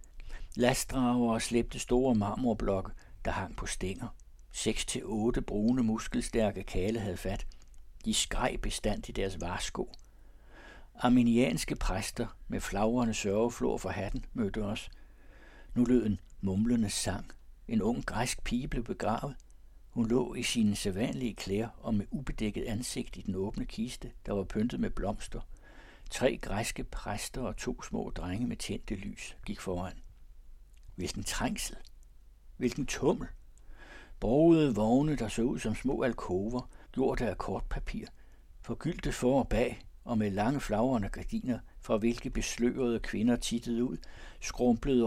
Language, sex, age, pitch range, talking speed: Danish, male, 60-79, 100-120 Hz, 140 wpm